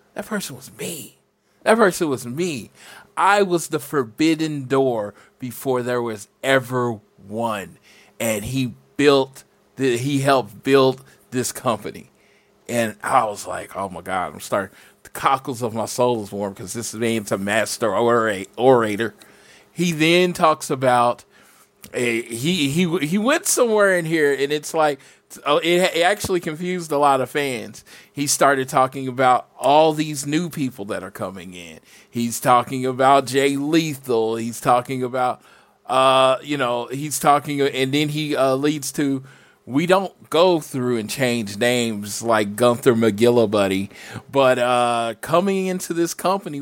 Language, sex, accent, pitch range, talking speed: English, male, American, 120-150 Hz, 155 wpm